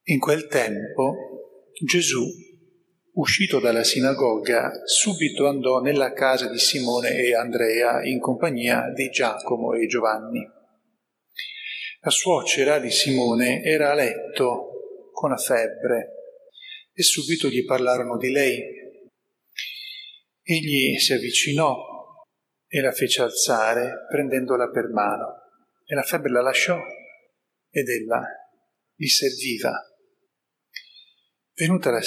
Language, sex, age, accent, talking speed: Italian, male, 40-59, native, 110 wpm